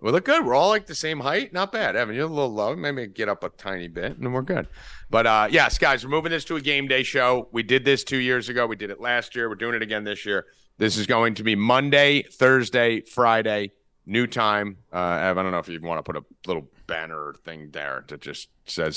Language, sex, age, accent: English, male, 30-49, American